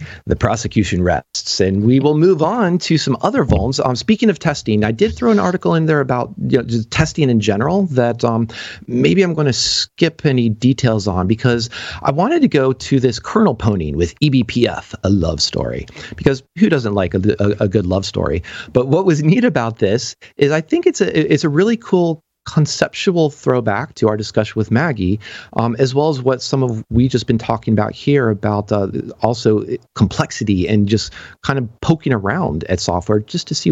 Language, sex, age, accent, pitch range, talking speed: English, male, 40-59, American, 105-155 Hz, 195 wpm